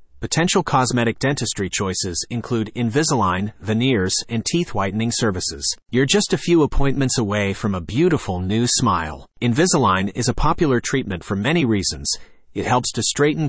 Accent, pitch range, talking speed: American, 100-135 Hz, 150 wpm